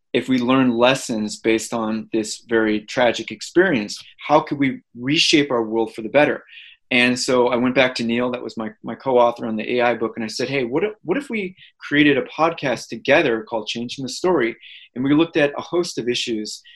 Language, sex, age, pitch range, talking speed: English, male, 20-39, 115-145 Hz, 210 wpm